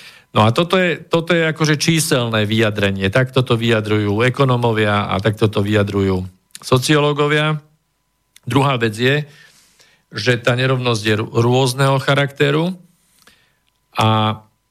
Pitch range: 110-135 Hz